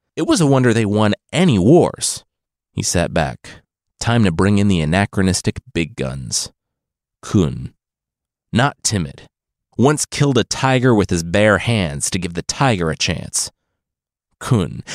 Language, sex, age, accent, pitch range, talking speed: English, male, 30-49, American, 95-135 Hz, 150 wpm